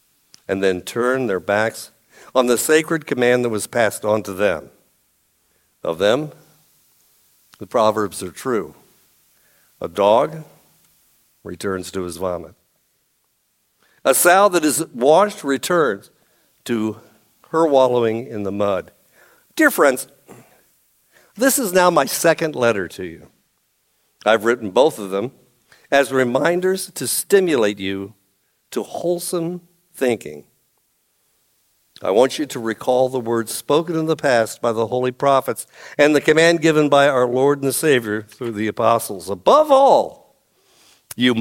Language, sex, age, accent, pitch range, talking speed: English, male, 60-79, American, 115-170 Hz, 135 wpm